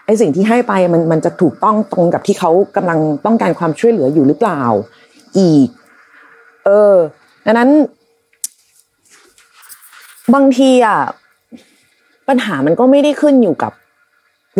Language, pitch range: Thai, 170-245 Hz